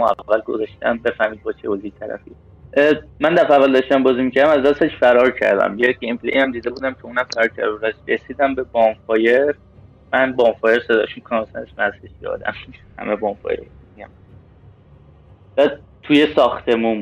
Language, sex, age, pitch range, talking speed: Persian, male, 30-49, 105-130 Hz, 140 wpm